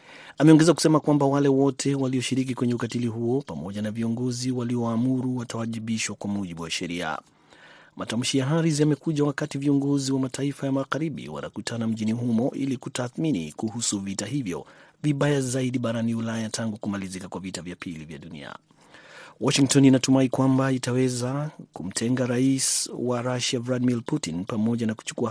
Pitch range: 110-135 Hz